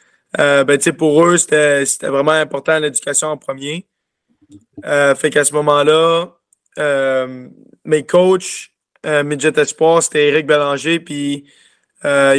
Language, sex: French, male